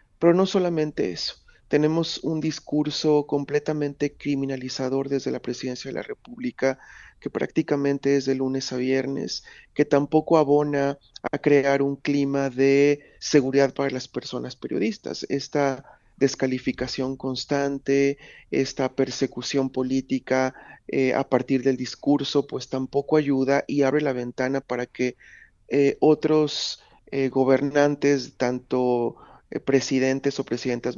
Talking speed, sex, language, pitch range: 120 wpm, male, Spanish, 130-145 Hz